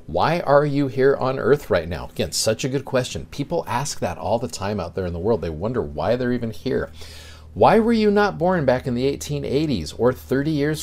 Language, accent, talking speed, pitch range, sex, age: English, American, 235 wpm, 105-140 Hz, male, 50-69